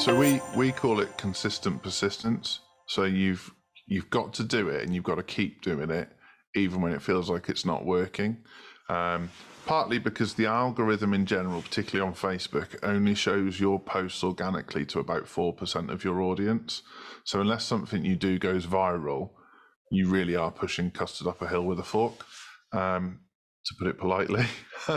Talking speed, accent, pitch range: 180 wpm, British, 90-105 Hz